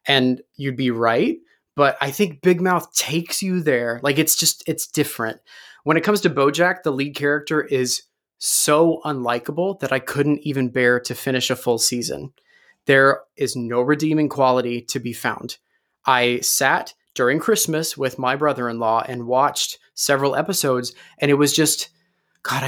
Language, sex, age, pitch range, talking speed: English, male, 20-39, 125-155 Hz, 165 wpm